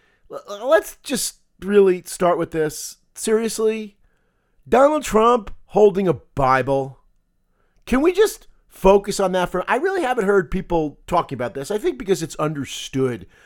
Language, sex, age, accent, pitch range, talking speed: English, male, 40-59, American, 135-200 Hz, 145 wpm